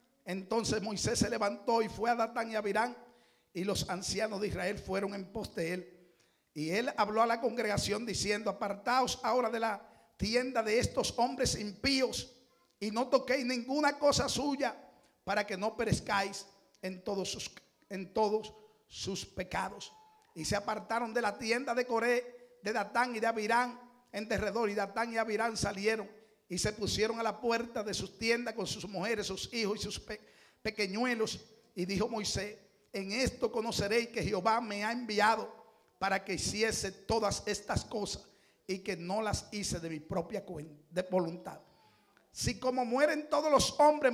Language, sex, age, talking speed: Spanish, male, 50-69, 165 wpm